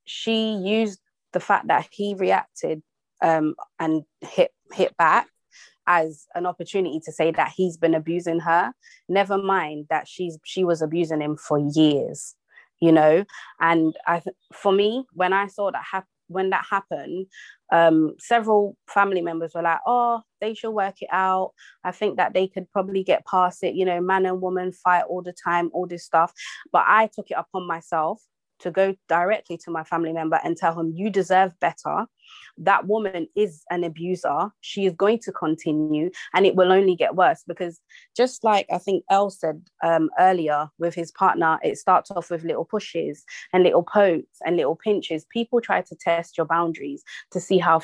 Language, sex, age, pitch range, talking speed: English, female, 20-39, 165-195 Hz, 185 wpm